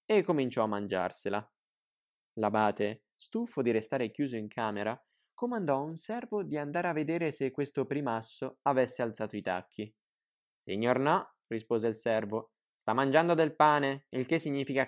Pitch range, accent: 105-145 Hz, native